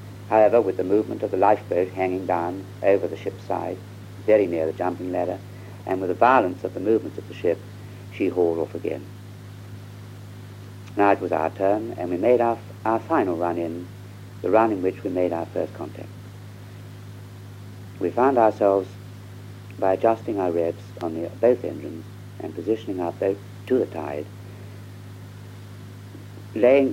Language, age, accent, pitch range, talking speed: English, 60-79, British, 95-100 Hz, 165 wpm